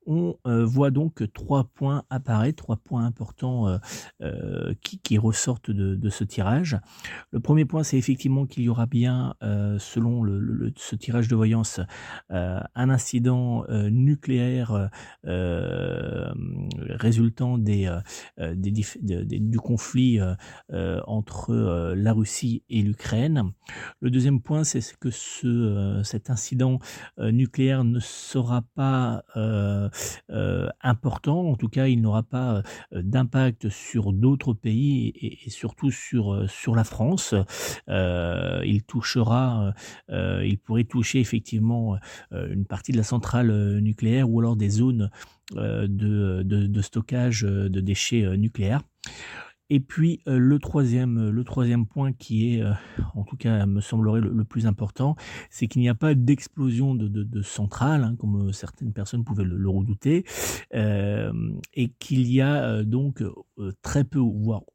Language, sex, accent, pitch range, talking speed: French, male, French, 105-130 Hz, 140 wpm